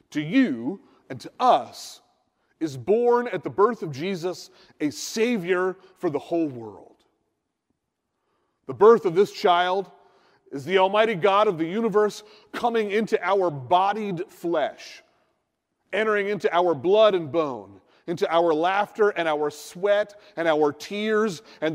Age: 40-59